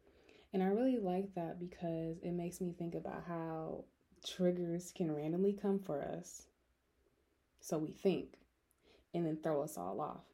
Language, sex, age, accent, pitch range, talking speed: English, female, 20-39, American, 165-185 Hz, 155 wpm